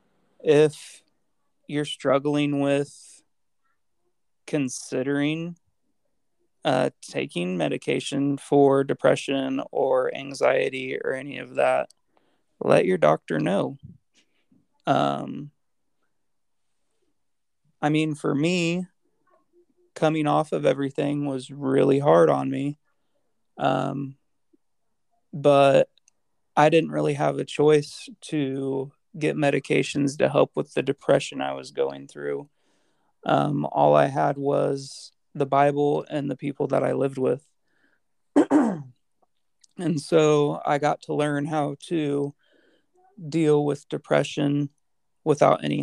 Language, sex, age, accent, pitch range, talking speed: English, male, 20-39, American, 135-155 Hz, 105 wpm